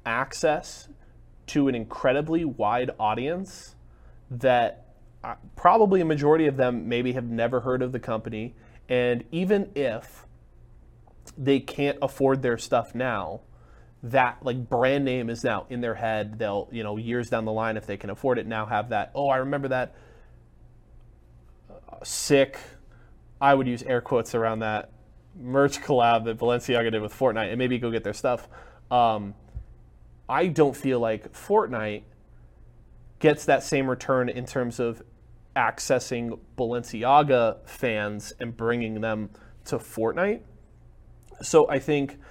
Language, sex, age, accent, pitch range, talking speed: English, male, 20-39, American, 110-135 Hz, 145 wpm